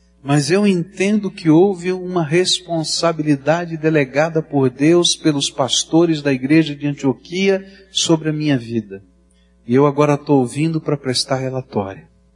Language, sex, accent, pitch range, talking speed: Portuguese, male, Brazilian, 115-180 Hz, 135 wpm